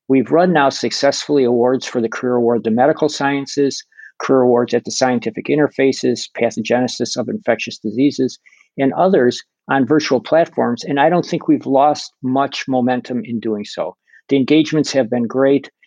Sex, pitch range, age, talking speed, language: male, 125-155 Hz, 50-69, 165 wpm, English